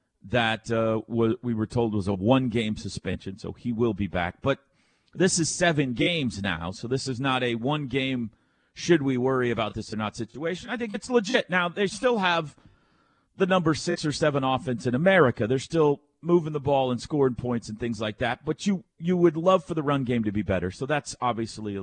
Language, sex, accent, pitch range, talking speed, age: English, male, American, 115-150 Hz, 200 wpm, 40-59